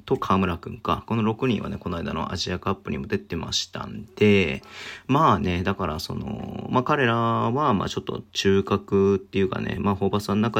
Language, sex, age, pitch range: Japanese, male, 40-59, 95-115 Hz